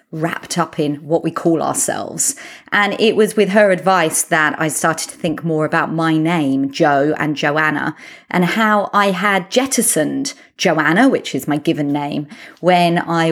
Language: English